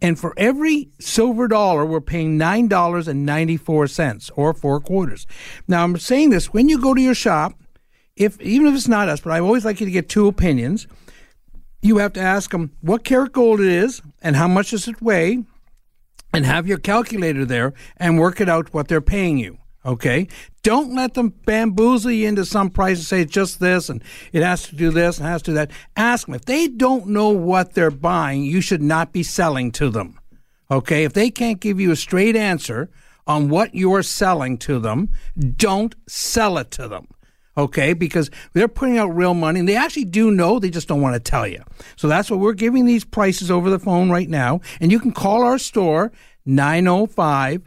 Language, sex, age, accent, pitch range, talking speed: English, male, 60-79, American, 160-220 Hz, 210 wpm